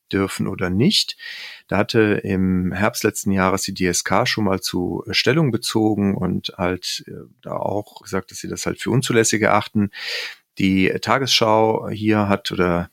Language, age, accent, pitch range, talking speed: German, 40-59, German, 95-110 Hz, 155 wpm